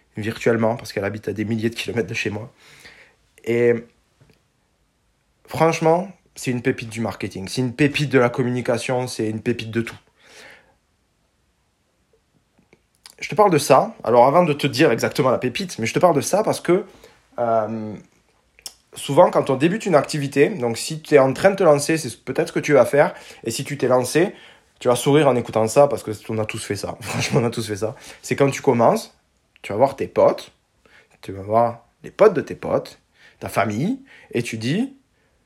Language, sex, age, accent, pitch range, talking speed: French, male, 20-39, French, 115-160 Hz, 205 wpm